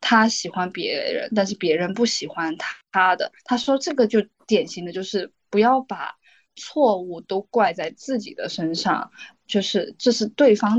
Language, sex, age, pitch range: Chinese, female, 10-29, 190-245 Hz